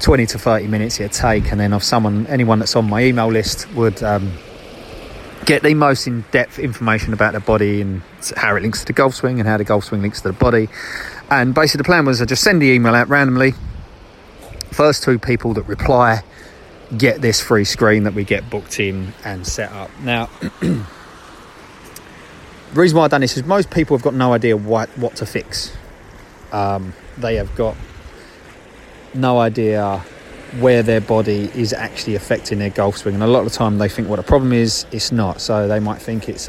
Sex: male